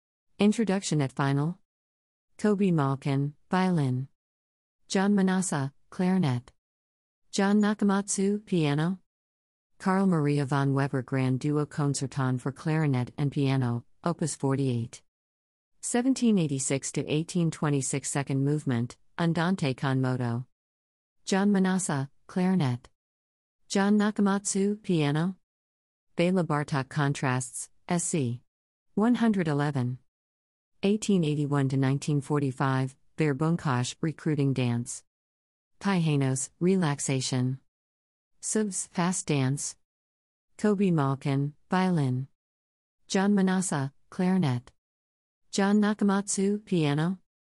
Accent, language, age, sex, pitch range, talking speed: American, English, 50-69, female, 125-185 Hz, 80 wpm